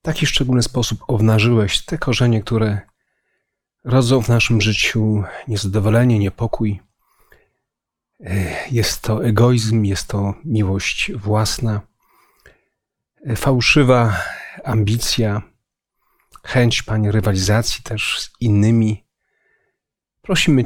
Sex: male